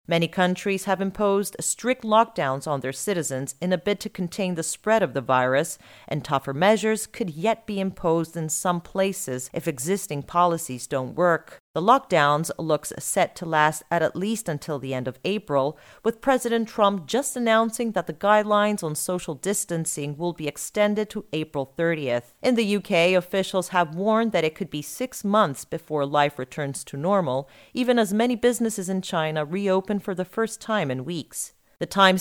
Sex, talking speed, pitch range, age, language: female, 180 wpm, 150-210 Hz, 40-59, English